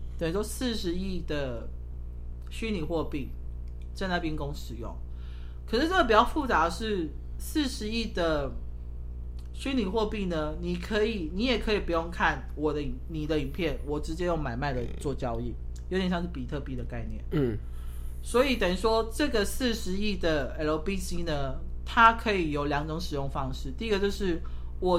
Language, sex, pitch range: Chinese, male, 125-205 Hz